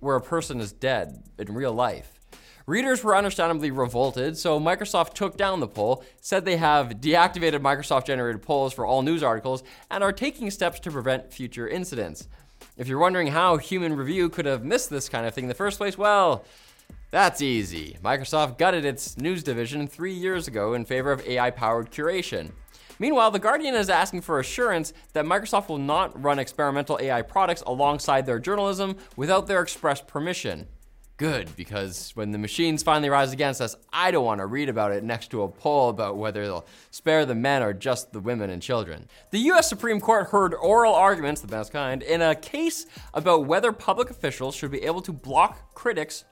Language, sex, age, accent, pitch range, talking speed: English, male, 20-39, American, 130-185 Hz, 190 wpm